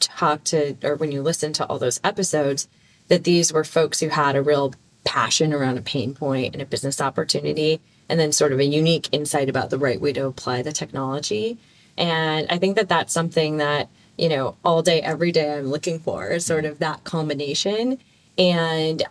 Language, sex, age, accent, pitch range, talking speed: English, female, 20-39, American, 150-175 Hz, 200 wpm